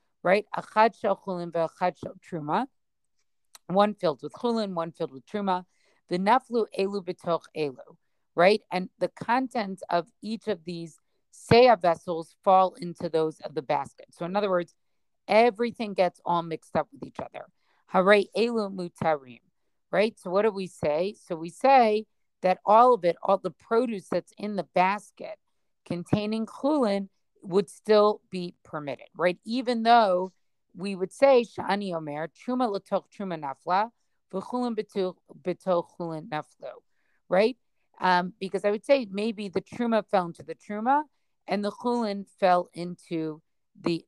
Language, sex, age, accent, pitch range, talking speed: English, female, 50-69, American, 175-215 Hz, 145 wpm